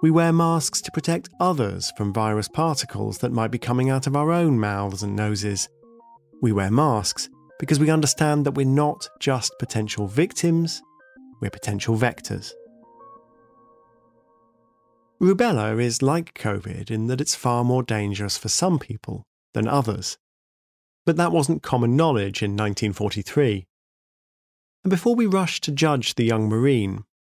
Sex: male